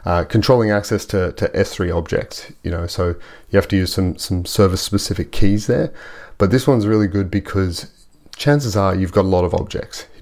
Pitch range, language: 90-105 Hz, English